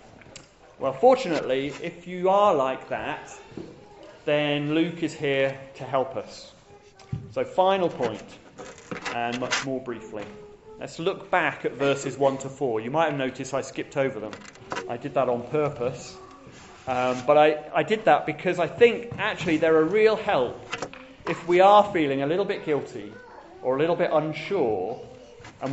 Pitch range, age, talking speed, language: 125-170 Hz, 30-49, 165 wpm, English